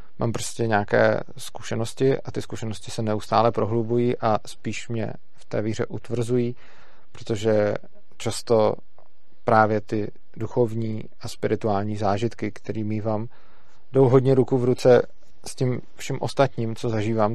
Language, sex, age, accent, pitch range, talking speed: Czech, male, 40-59, native, 110-120 Hz, 130 wpm